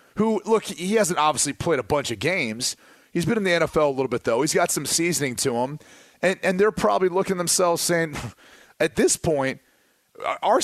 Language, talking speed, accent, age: English, 220 wpm, American, 30-49